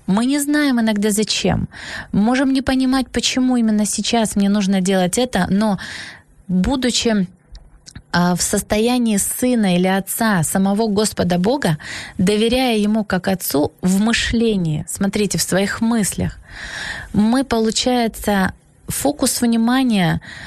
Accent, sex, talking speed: native, female, 115 wpm